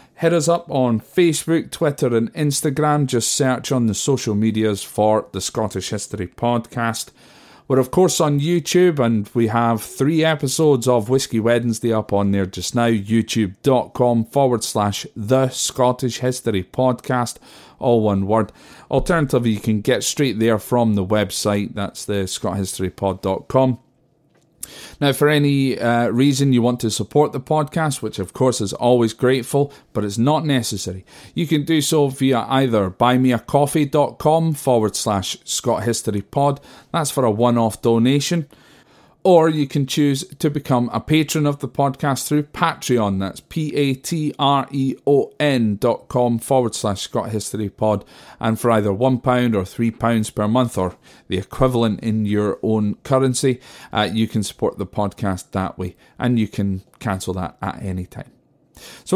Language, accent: English, British